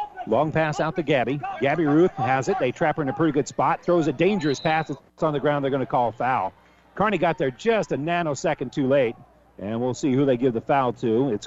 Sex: male